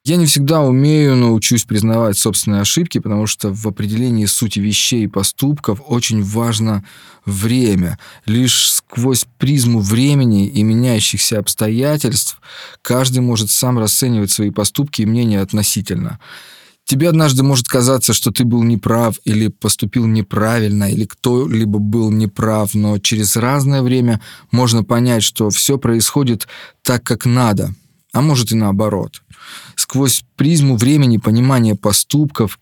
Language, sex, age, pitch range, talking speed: Russian, male, 20-39, 105-125 Hz, 130 wpm